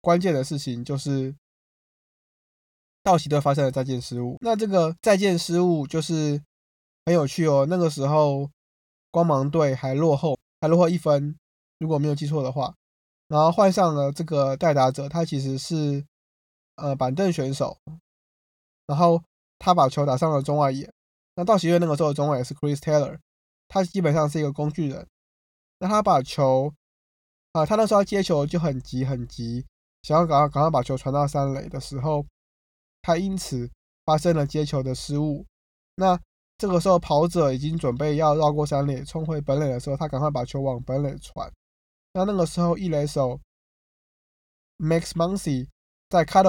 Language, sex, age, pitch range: Chinese, male, 20-39, 135-165 Hz